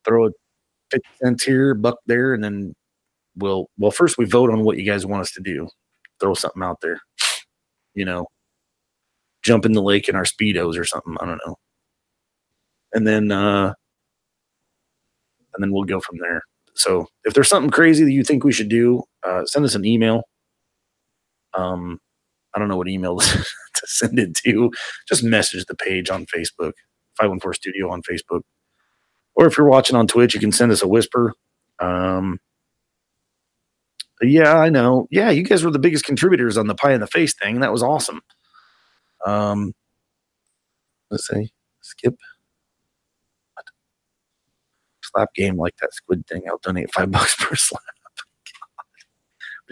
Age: 30-49